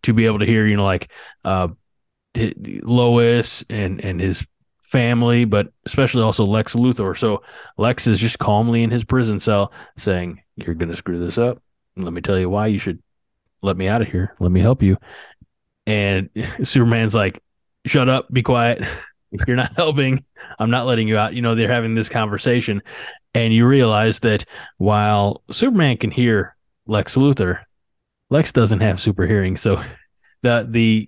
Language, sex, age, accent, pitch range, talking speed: English, male, 20-39, American, 100-120 Hz, 170 wpm